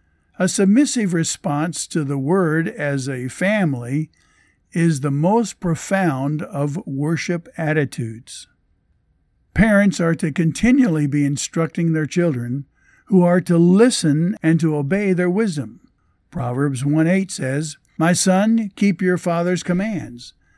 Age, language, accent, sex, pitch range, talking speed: 50-69, English, American, male, 145-185 Hz, 125 wpm